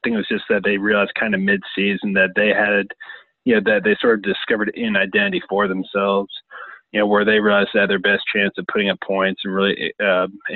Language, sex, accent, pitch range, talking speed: English, male, American, 100-110 Hz, 240 wpm